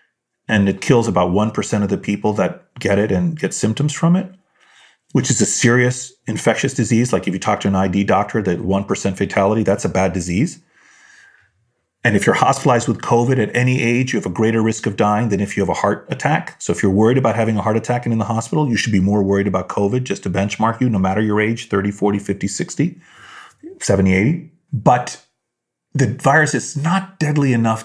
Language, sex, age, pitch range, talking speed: English, male, 30-49, 100-135 Hz, 220 wpm